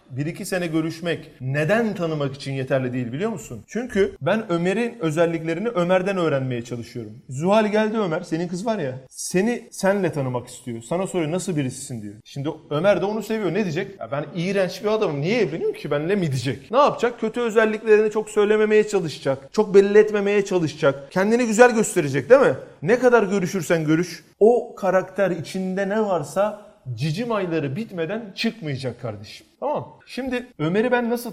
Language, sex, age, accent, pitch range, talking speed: Turkish, male, 40-59, native, 140-205 Hz, 165 wpm